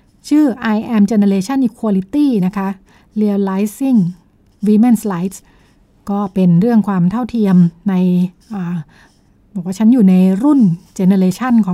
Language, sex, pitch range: Thai, female, 185-225 Hz